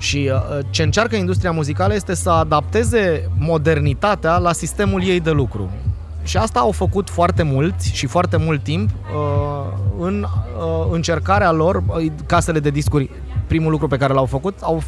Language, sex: Romanian, male